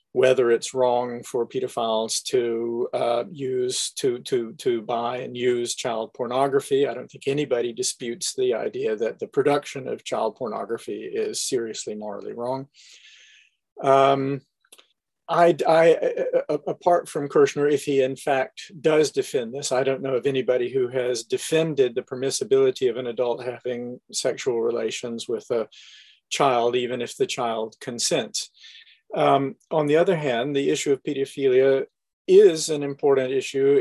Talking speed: 145 wpm